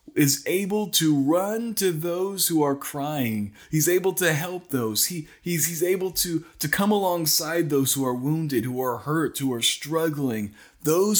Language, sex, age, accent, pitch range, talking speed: English, male, 20-39, American, 115-155 Hz, 175 wpm